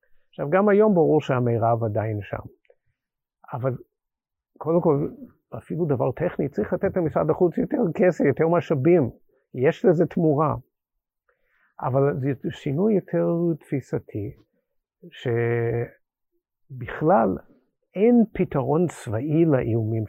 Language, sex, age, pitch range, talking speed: Hebrew, male, 50-69, 125-180 Hz, 100 wpm